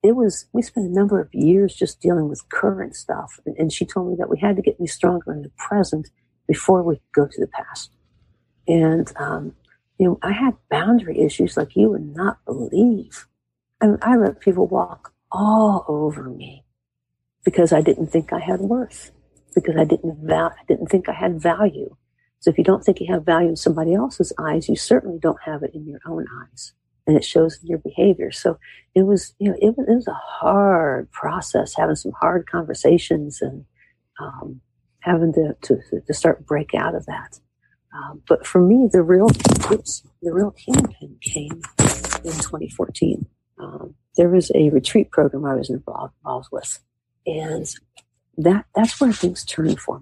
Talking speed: 190 wpm